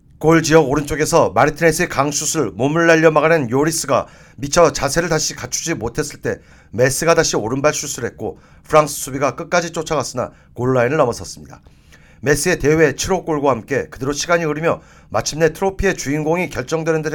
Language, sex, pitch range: Korean, male, 145-170 Hz